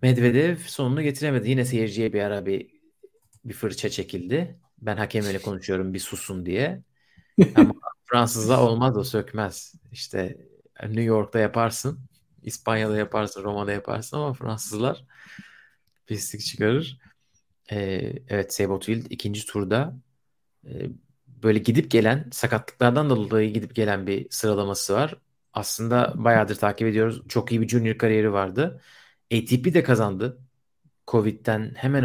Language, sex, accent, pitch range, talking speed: Turkish, male, native, 105-135 Hz, 120 wpm